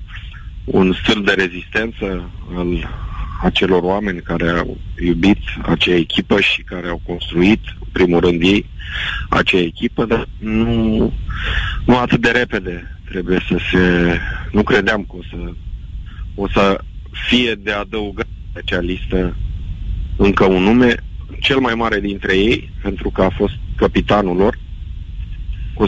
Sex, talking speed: male, 135 wpm